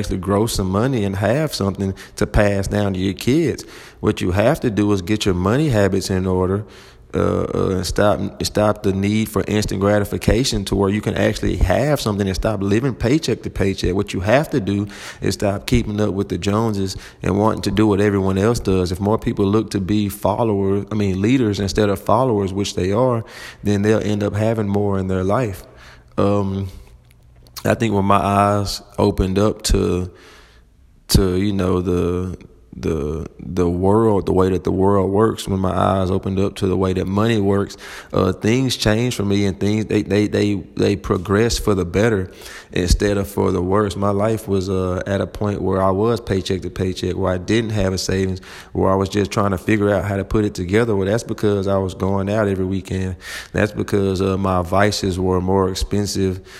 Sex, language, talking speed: male, English, 205 wpm